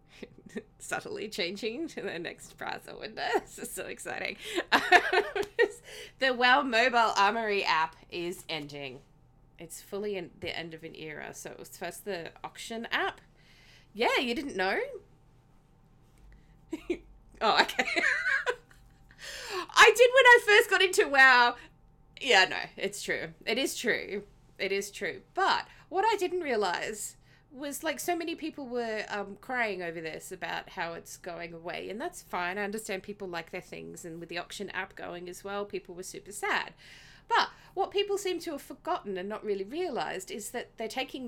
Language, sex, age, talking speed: English, female, 20-39, 165 wpm